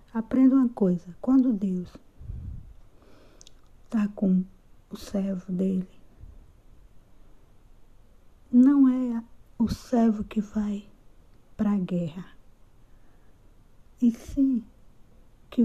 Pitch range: 190-250 Hz